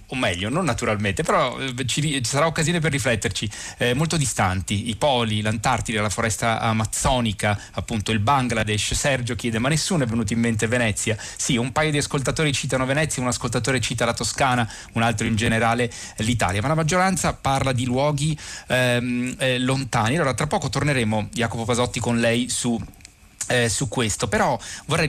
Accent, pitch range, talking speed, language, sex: native, 105-130 Hz, 170 wpm, Italian, male